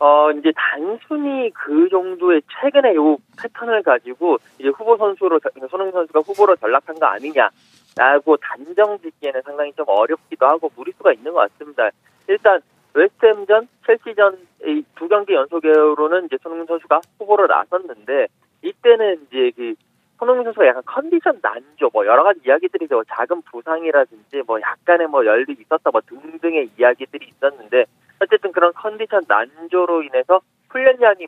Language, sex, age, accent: Korean, male, 40-59, native